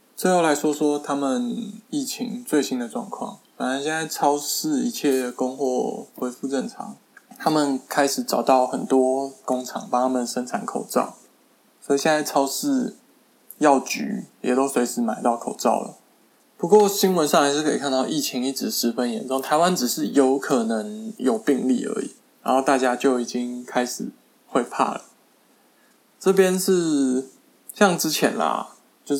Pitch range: 130-195 Hz